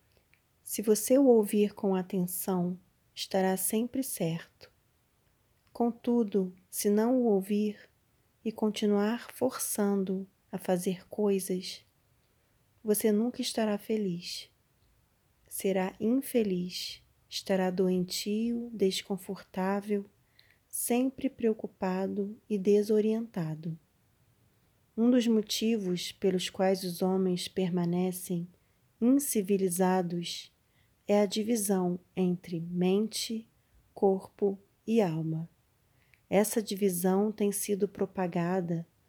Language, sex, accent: Portuguese, female, Brazilian